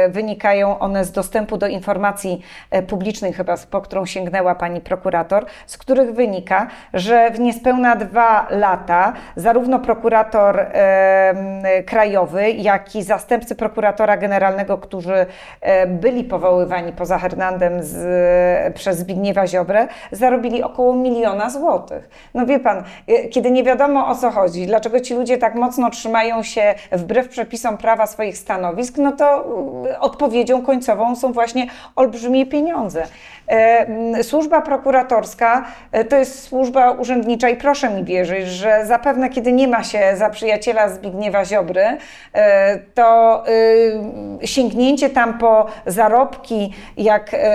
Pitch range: 200-245 Hz